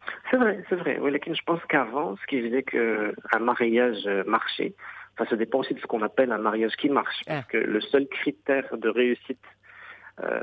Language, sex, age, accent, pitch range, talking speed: English, male, 50-69, French, 110-130 Hz, 200 wpm